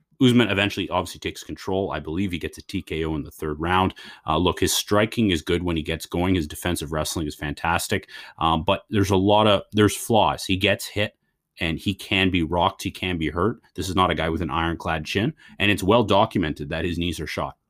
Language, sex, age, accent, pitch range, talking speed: English, male, 30-49, American, 80-100 Hz, 230 wpm